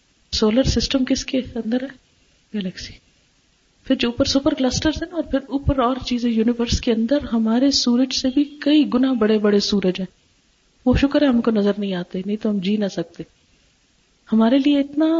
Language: Urdu